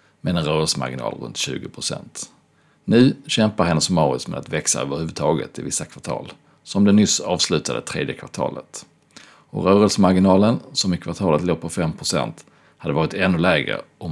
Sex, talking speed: male, 145 wpm